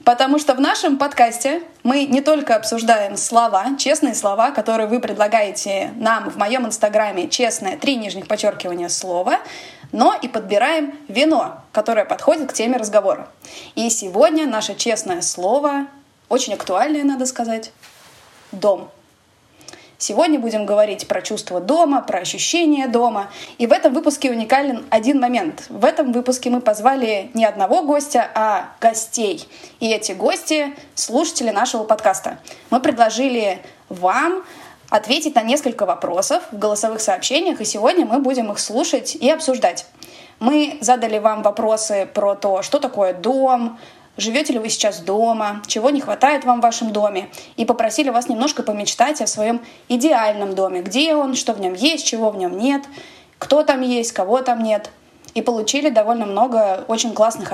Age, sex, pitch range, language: 20-39, female, 220-290 Hz, Russian